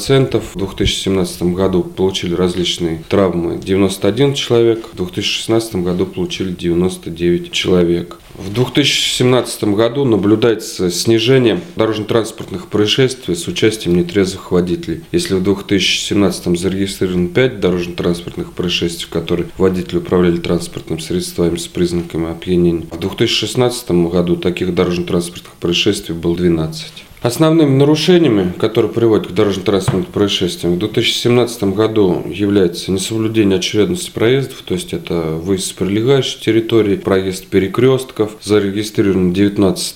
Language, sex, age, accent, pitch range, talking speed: Russian, male, 30-49, native, 90-115 Hz, 110 wpm